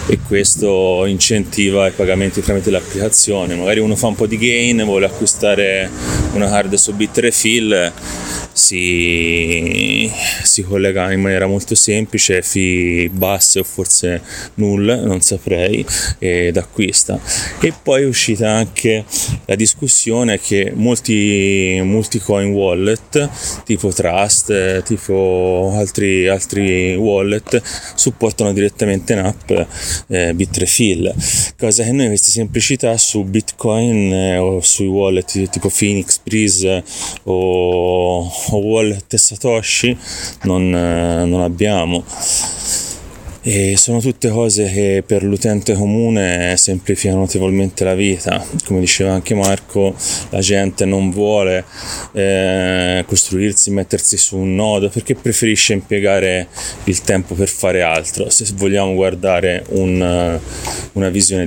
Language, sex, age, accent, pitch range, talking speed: Italian, male, 20-39, native, 95-110 Hz, 115 wpm